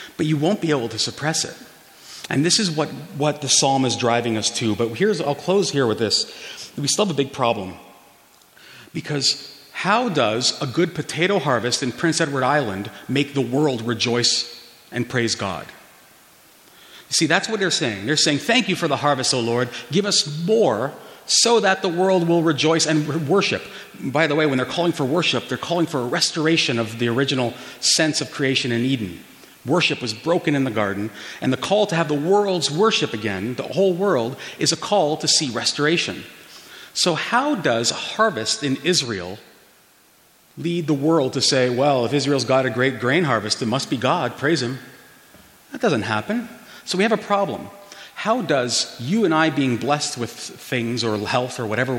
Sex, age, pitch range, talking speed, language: male, 40-59, 120-165 Hz, 195 wpm, English